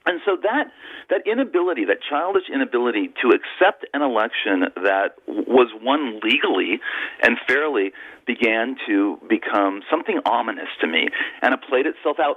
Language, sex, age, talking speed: English, male, 40-59, 145 wpm